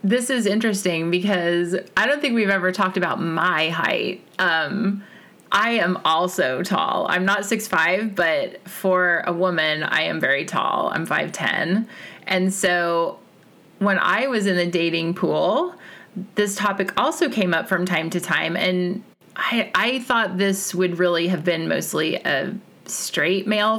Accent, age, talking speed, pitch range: American, 30-49, 155 wpm, 175-215 Hz